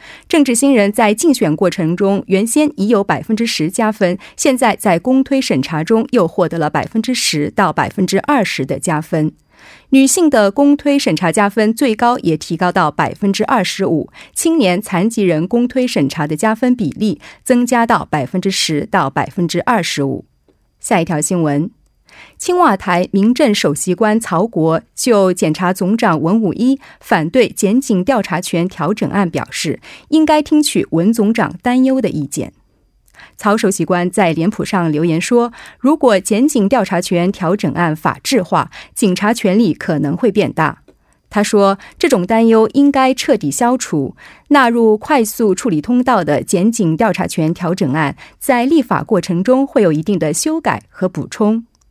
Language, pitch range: Korean, 175-245 Hz